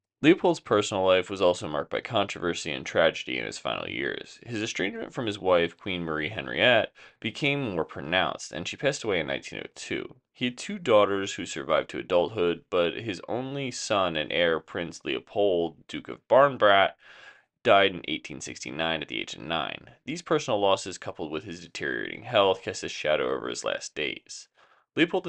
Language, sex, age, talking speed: English, male, 20-39, 175 wpm